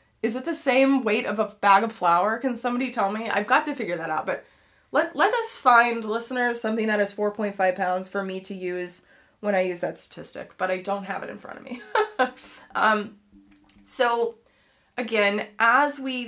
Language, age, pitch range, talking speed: English, 20-39, 185-230 Hz, 200 wpm